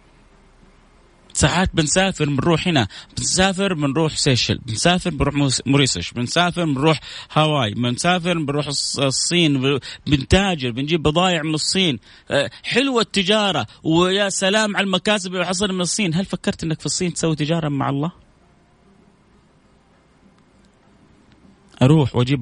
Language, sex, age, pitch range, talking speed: Arabic, male, 30-49, 125-175 Hz, 110 wpm